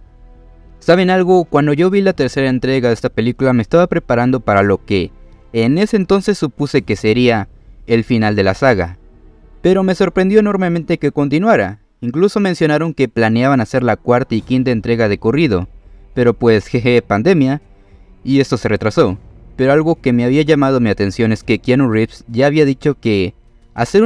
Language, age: Spanish, 20-39